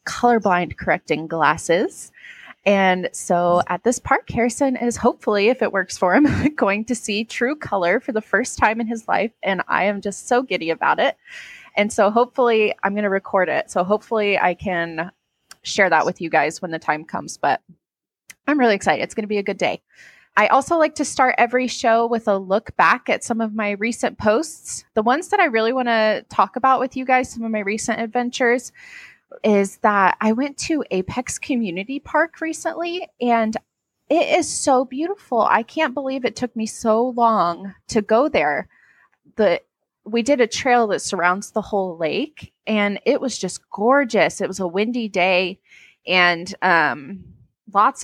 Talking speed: 185 wpm